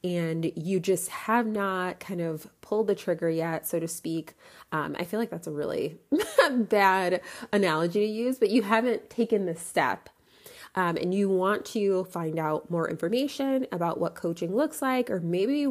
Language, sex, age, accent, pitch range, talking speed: English, female, 20-39, American, 165-215 Hz, 185 wpm